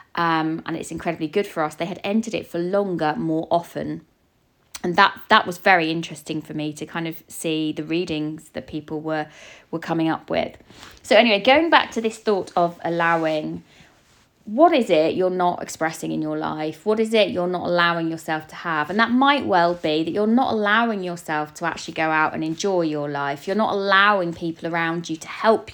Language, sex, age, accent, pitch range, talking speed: English, female, 20-39, British, 155-190 Hz, 210 wpm